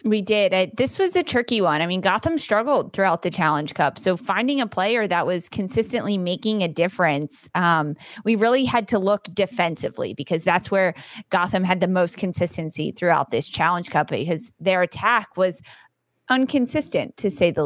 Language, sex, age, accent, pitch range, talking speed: English, female, 20-39, American, 175-210 Hz, 175 wpm